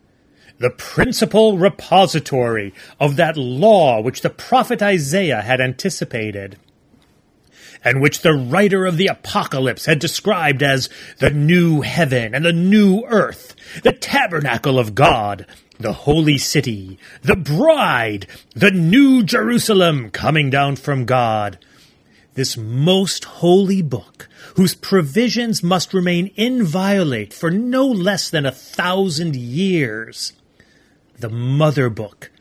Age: 30-49